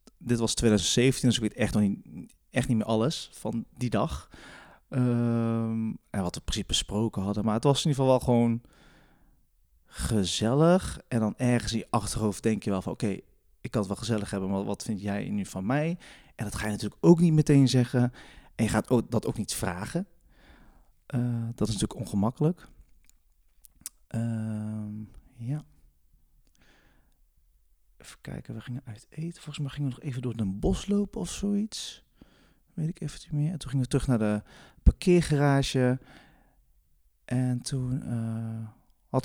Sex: male